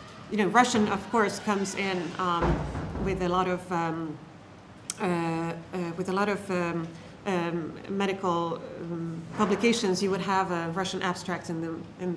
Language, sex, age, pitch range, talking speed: English, female, 40-59, 165-190 Hz, 115 wpm